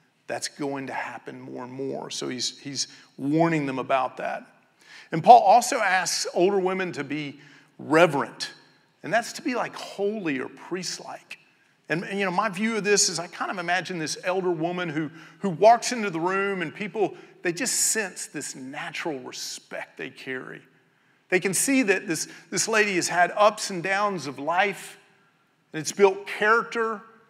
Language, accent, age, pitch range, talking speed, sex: English, American, 40-59, 145-200 Hz, 180 wpm, male